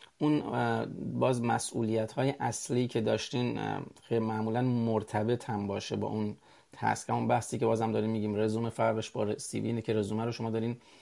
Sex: male